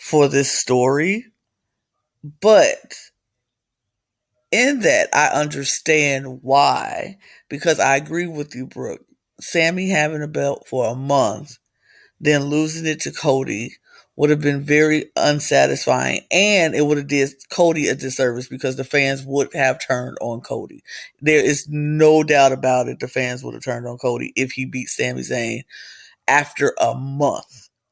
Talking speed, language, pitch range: 150 wpm, English, 130-155 Hz